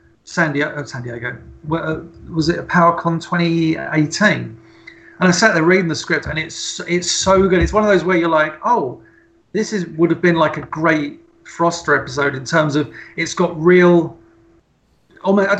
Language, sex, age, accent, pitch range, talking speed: English, male, 40-59, British, 155-185 Hz, 180 wpm